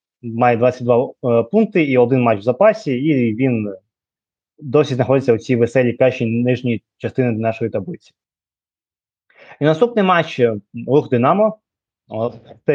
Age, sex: 20-39, male